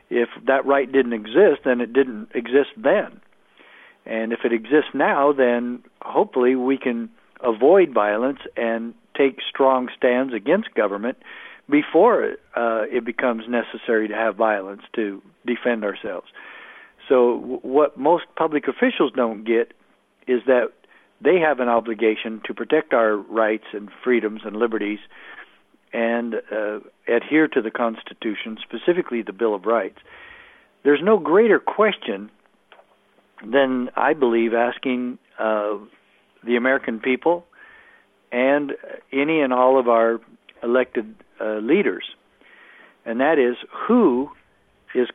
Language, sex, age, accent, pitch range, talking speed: English, male, 60-79, American, 115-145 Hz, 130 wpm